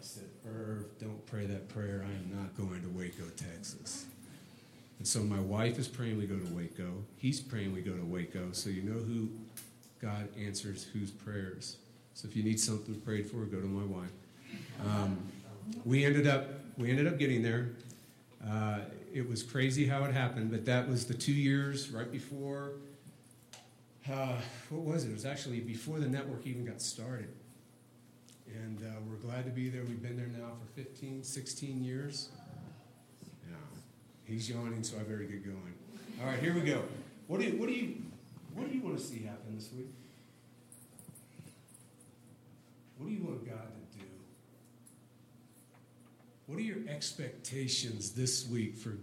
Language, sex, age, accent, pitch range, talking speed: English, male, 40-59, American, 105-135 Hz, 175 wpm